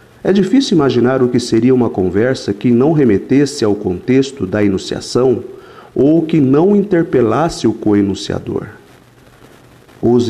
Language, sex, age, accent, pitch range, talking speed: Portuguese, male, 50-69, Brazilian, 105-145 Hz, 130 wpm